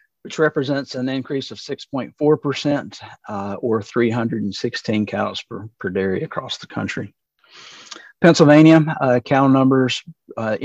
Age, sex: 50-69, male